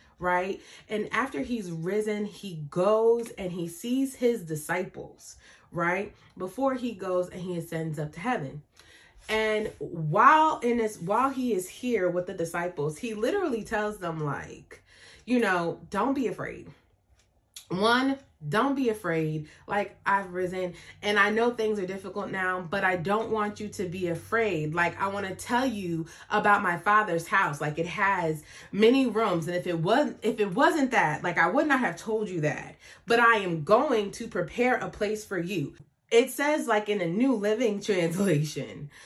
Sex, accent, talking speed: female, American, 175 wpm